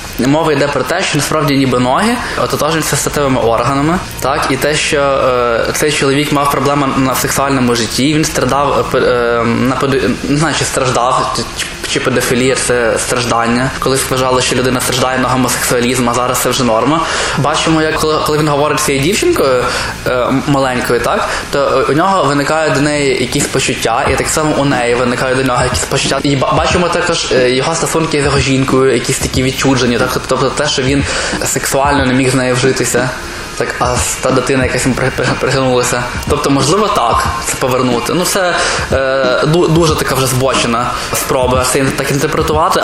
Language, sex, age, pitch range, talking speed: Ukrainian, male, 20-39, 125-150 Hz, 165 wpm